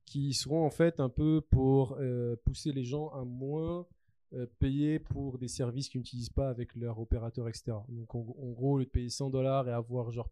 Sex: male